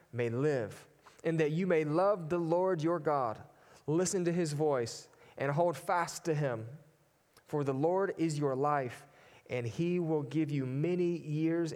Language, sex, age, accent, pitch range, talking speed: English, male, 30-49, American, 130-165 Hz, 170 wpm